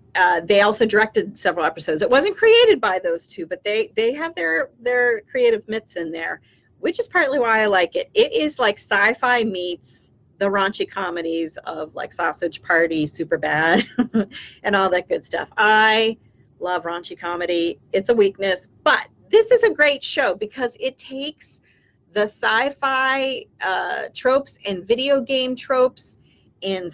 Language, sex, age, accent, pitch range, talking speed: English, female, 40-59, American, 180-265 Hz, 165 wpm